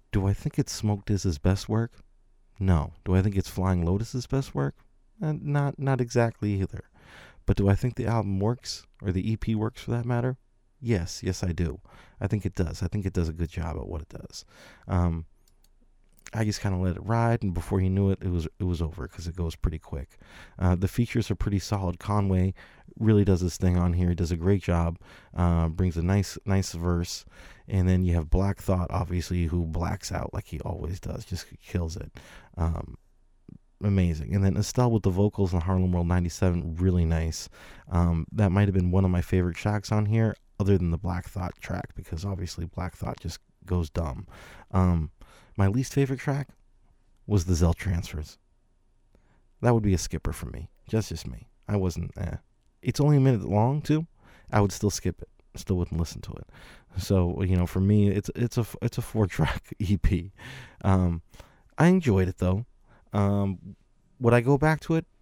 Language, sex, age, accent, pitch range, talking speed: English, male, 30-49, American, 90-110 Hz, 205 wpm